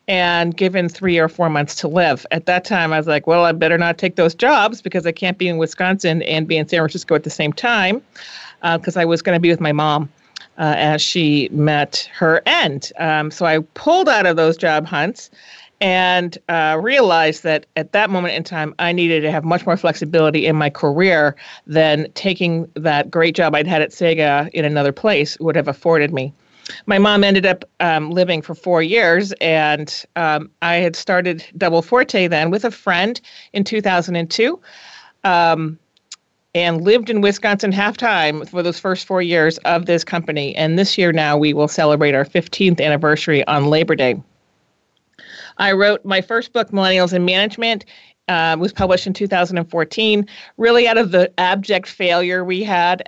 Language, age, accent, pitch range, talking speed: English, 40-59, American, 155-190 Hz, 190 wpm